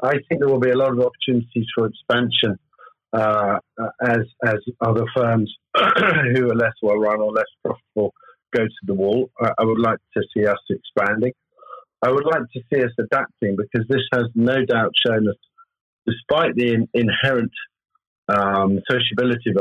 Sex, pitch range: male, 105-125 Hz